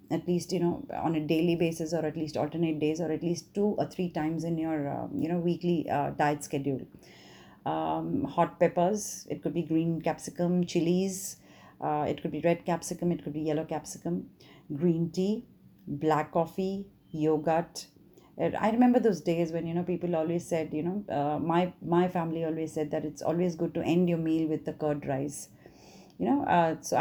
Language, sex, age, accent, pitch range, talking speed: English, female, 30-49, Indian, 155-175 Hz, 195 wpm